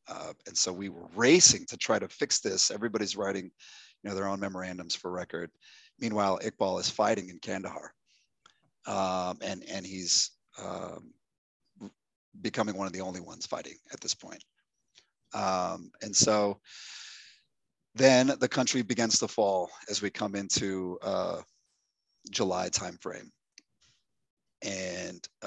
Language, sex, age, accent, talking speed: English, male, 30-49, American, 135 wpm